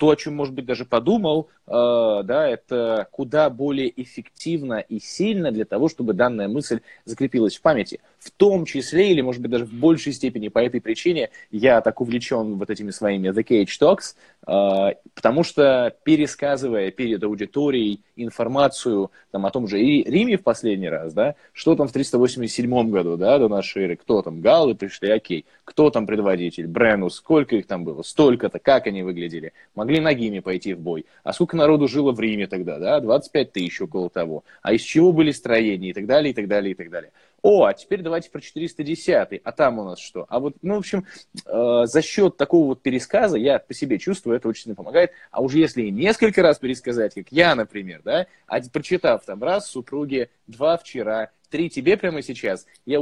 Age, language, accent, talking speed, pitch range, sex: 20-39, Russian, native, 190 wpm, 110-160 Hz, male